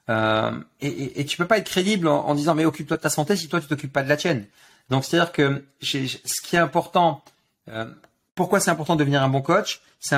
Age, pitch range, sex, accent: 40-59, 130-165 Hz, male, French